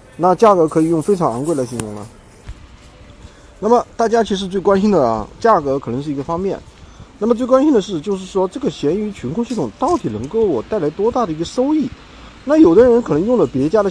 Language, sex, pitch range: Chinese, male, 135-225 Hz